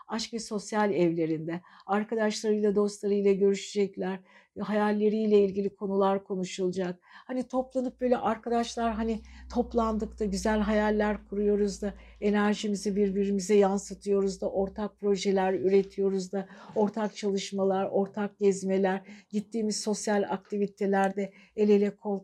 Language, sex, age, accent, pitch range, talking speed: Turkish, female, 60-79, native, 190-210 Hz, 105 wpm